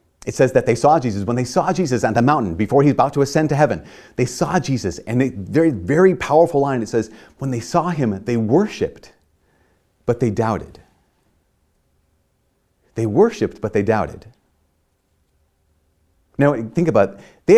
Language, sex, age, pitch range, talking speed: English, male, 30-49, 95-135 Hz, 170 wpm